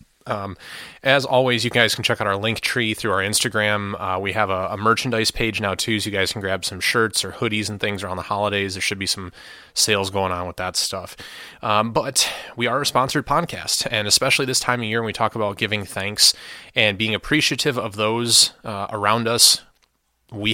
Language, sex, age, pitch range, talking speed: English, male, 20-39, 100-120 Hz, 220 wpm